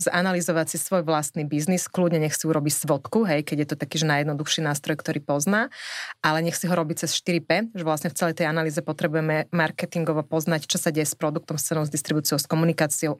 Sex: female